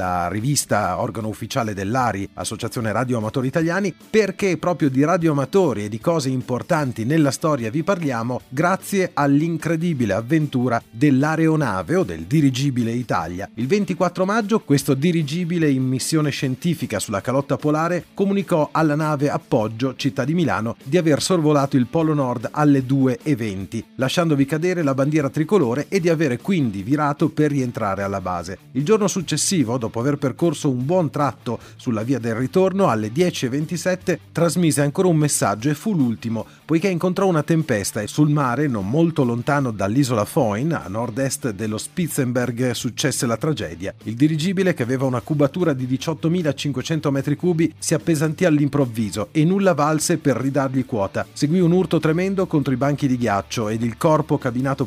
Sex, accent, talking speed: male, native, 155 wpm